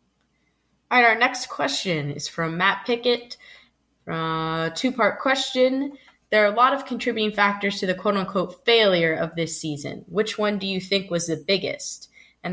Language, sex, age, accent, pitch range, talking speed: English, female, 20-39, American, 160-195 Hz, 170 wpm